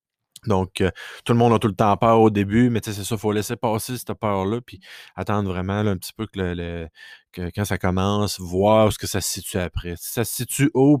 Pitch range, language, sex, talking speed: 95-110 Hz, French, male, 265 wpm